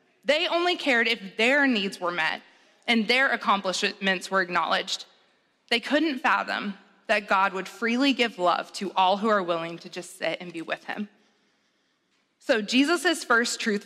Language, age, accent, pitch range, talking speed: English, 20-39, American, 200-270 Hz, 165 wpm